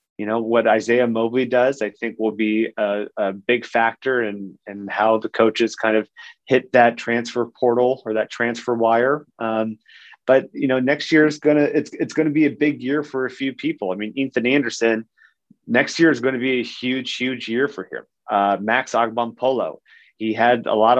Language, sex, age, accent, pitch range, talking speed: English, male, 30-49, American, 110-130 Hz, 210 wpm